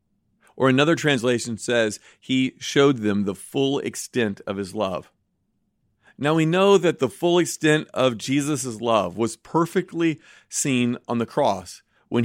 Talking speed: 145 wpm